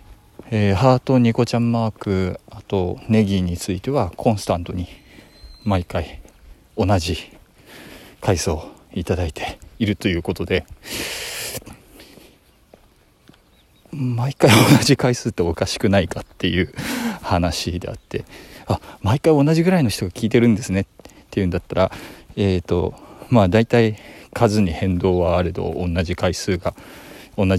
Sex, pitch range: male, 90-120 Hz